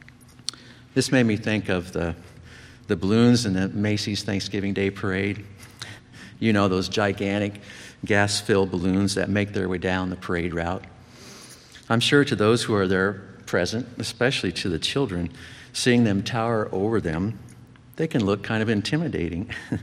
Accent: American